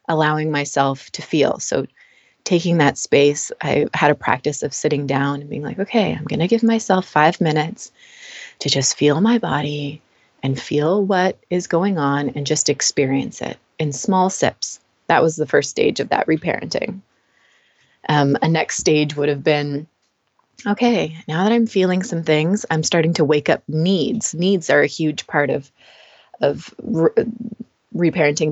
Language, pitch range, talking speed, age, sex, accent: English, 145-180 Hz, 170 wpm, 20-39, female, American